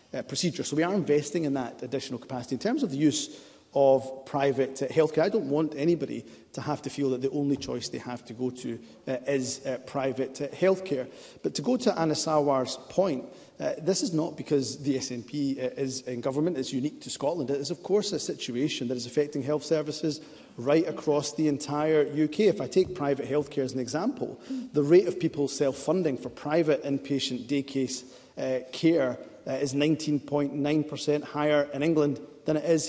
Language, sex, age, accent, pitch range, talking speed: English, male, 30-49, British, 135-155 Hz, 205 wpm